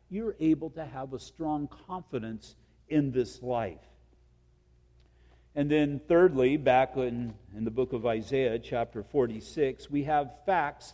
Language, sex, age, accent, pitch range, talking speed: English, male, 50-69, American, 130-170 Hz, 135 wpm